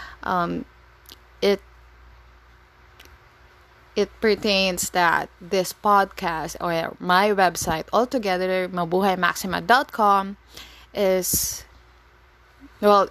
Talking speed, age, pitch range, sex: 65 wpm, 20-39, 160-200 Hz, female